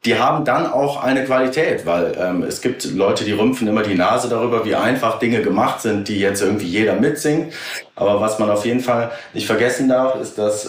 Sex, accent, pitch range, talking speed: male, German, 105-140 Hz, 215 wpm